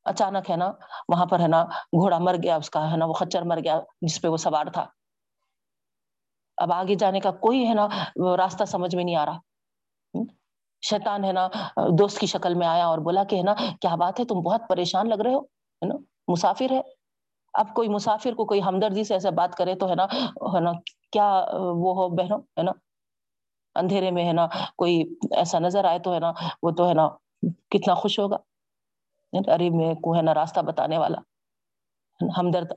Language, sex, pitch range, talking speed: Urdu, female, 170-205 Hz, 185 wpm